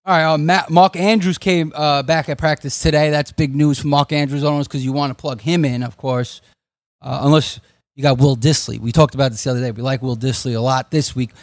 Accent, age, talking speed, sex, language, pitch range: American, 30-49, 250 wpm, male, English, 130-175 Hz